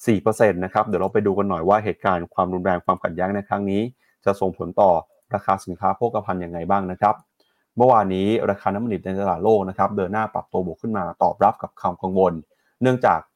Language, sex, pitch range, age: Thai, male, 95-130 Hz, 30-49